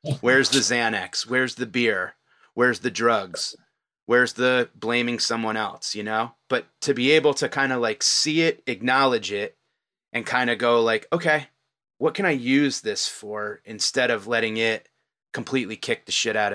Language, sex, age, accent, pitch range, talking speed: English, male, 30-49, American, 110-140 Hz, 180 wpm